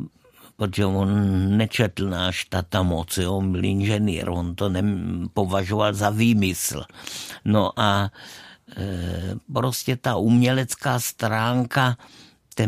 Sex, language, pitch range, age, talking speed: male, Czech, 95-120 Hz, 50-69, 110 wpm